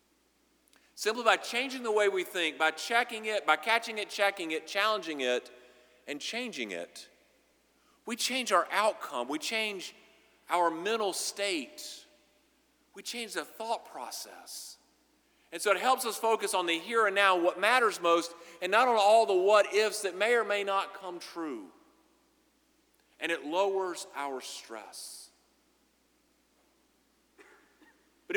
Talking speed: 140 wpm